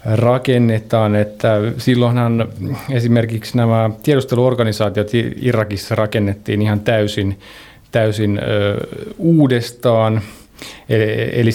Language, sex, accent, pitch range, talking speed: Finnish, male, native, 105-120 Hz, 70 wpm